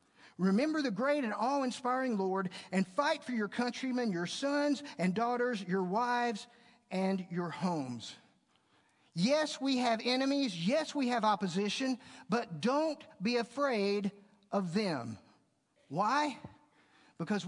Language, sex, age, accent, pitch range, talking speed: English, male, 50-69, American, 200-280 Hz, 125 wpm